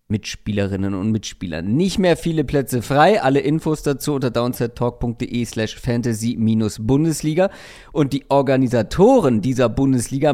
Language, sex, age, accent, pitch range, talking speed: German, male, 40-59, German, 115-150 Hz, 110 wpm